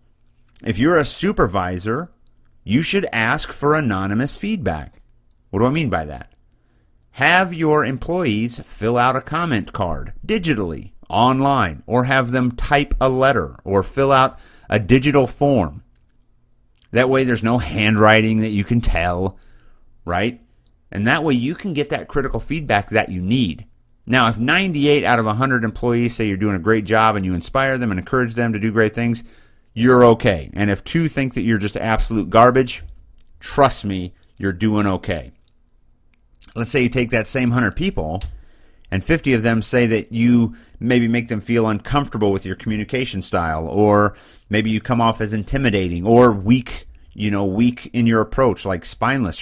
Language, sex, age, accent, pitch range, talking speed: English, male, 50-69, American, 100-125 Hz, 170 wpm